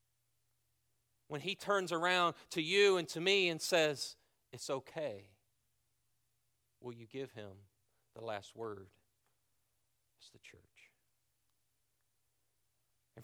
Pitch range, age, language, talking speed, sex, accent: 120-175 Hz, 40-59, English, 110 wpm, male, American